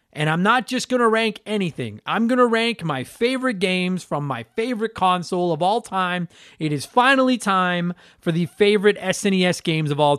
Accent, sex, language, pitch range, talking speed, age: American, male, English, 160-205 Hz, 195 wpm, 30-49